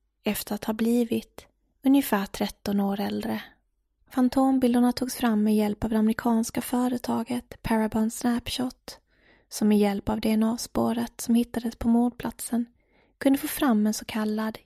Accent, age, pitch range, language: Swedish, 20-39, 210-245 Hz, English